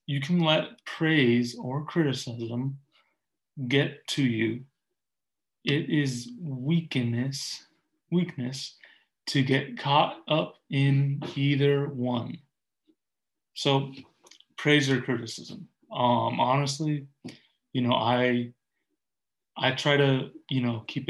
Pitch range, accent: 125-140 Hz, American